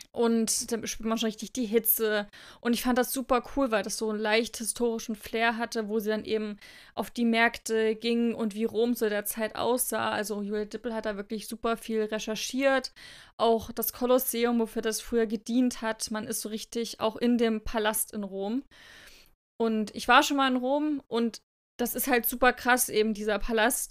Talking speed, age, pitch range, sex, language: 205 wpm, 20-39, 215-240 Hz, female, German